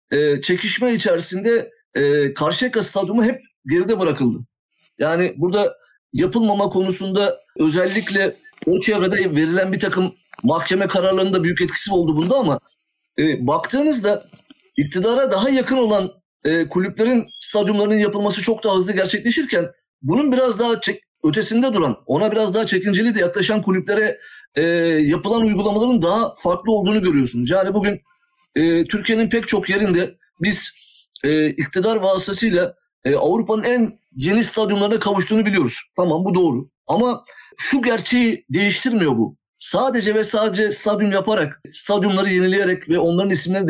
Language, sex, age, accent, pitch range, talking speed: Turkish, male, 50-69, native, 180-225 Hz, 130 wpm